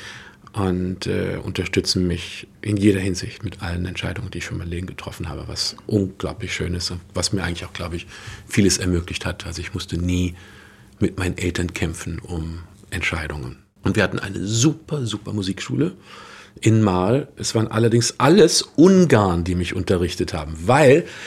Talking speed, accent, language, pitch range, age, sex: 170 wpm, German, German, 90-110 Hz, 50-69, male